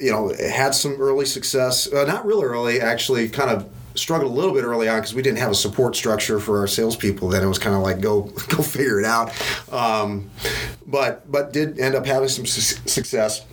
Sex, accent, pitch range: male, American, 100-125 Hz